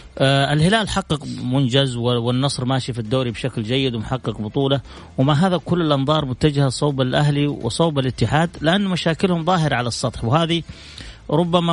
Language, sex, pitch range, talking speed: English, male, 125-165 Hz, 140 wpm